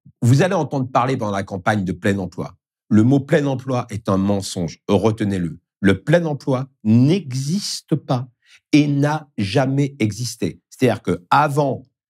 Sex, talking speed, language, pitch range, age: male, 145 wpm, French, 105-140 Hz, 50-69